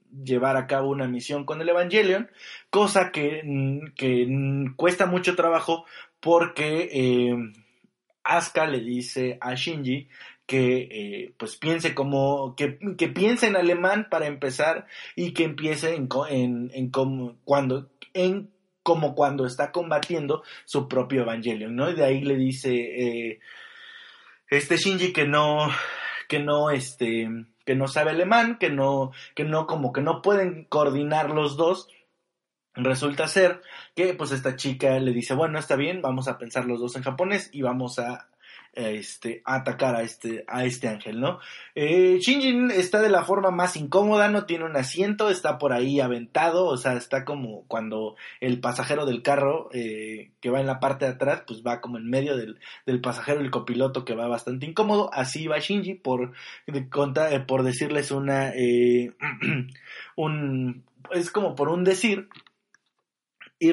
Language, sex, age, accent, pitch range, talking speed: Spanish, male, 20-39, Mexican, 130-170 Hz, 160 wpm